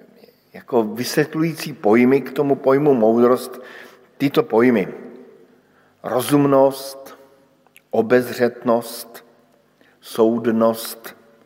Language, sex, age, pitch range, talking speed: Slovak, male, 50-69, 120-145 Hz, 65 wpm